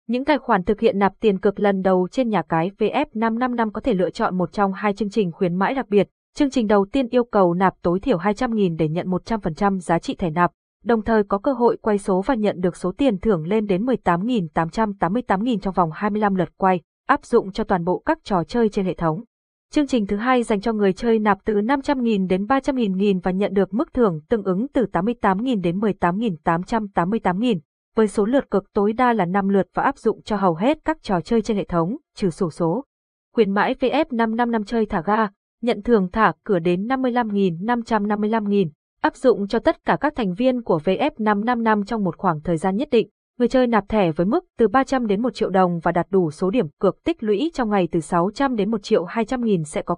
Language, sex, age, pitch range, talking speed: Vietnamese, female, 20-39, 185-235 Hz, 220 wpm